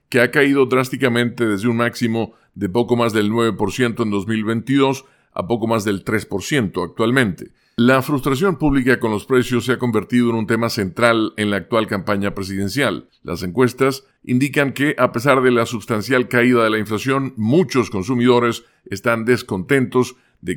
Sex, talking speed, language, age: male, 160 wpm, Spanish, 50-69